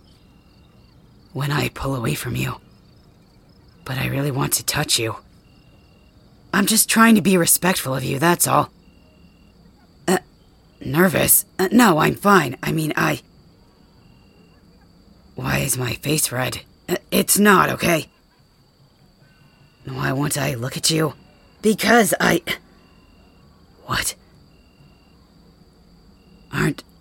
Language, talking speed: English, 115 wpm